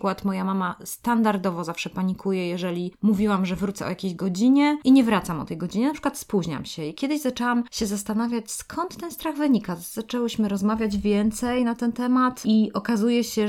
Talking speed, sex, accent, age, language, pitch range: 180 wpm, female, native, 20-39, Polish, 180-220 Hz